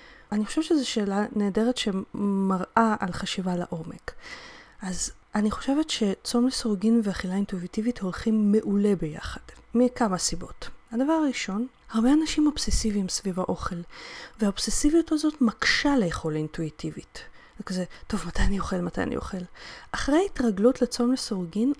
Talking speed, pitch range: 125 wpm, 200-275 Hz